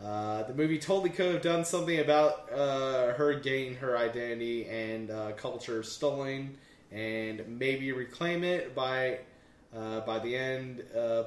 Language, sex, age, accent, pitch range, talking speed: English, male, 20-39, American, 115-150 Hz, 150 wpm